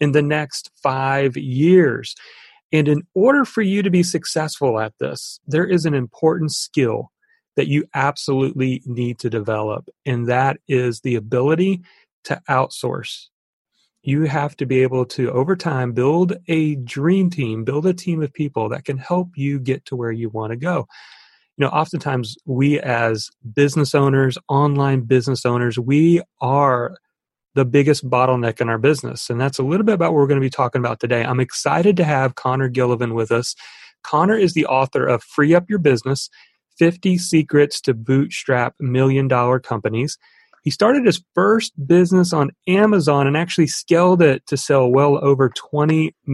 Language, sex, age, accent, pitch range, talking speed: English, male, 40-59, American, 130-165 Hz, 170 wpm